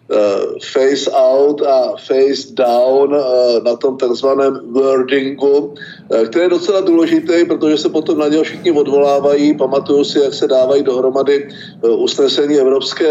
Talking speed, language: 130 wpm, Czech